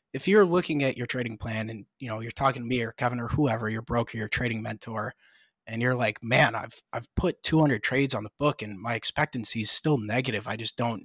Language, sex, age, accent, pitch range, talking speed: English, male, 20-39, American, 110-135 Hz, 240 wpm